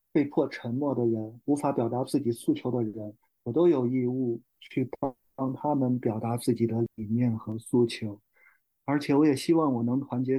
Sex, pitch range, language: male, 115-145 Hz, Chinese